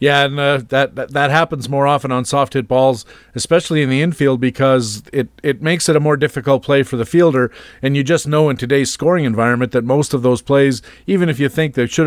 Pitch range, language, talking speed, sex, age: 120-140 Hz, English, 235 wpm, male, 50-69